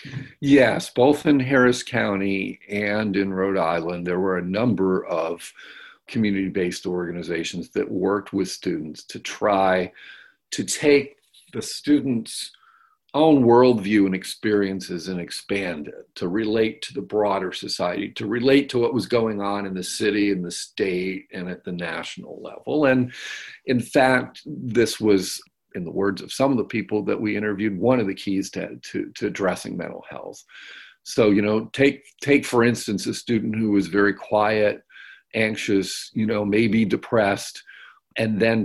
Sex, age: male, 50-69